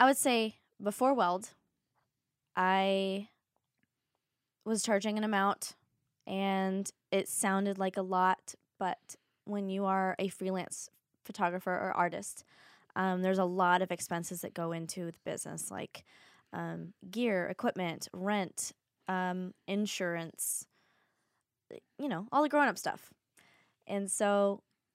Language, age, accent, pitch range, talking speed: English, 20-39, American, 180-210 Hz, 125 wpm